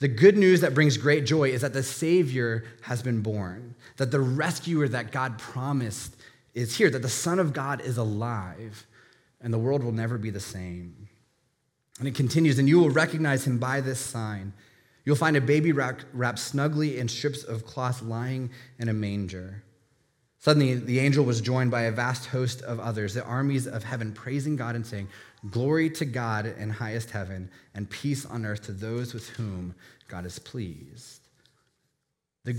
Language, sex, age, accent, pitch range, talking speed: English, male, 20-39, American, 115-145 Hz, 180 wpm